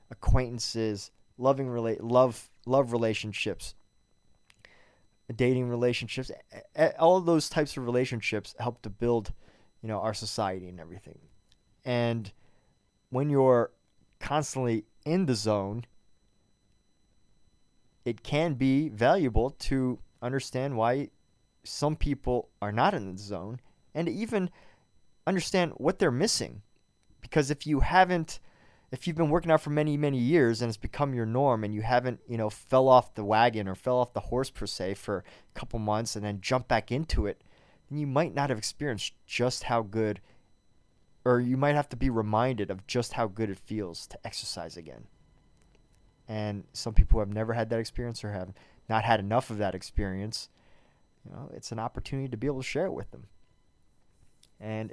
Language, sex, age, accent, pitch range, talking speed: English, male, 20-39, American, 105-130 Hz, 165 wpm